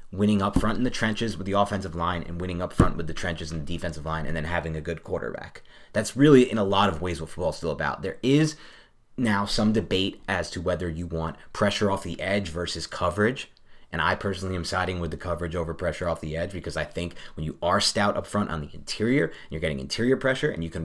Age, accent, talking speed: 30-49, American, 250 wpm